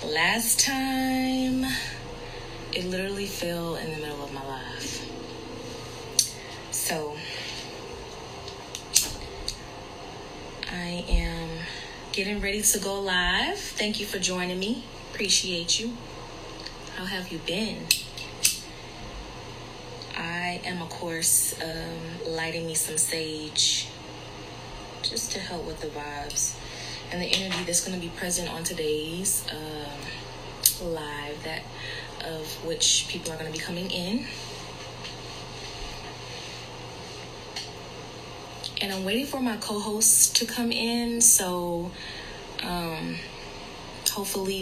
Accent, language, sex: American, English, female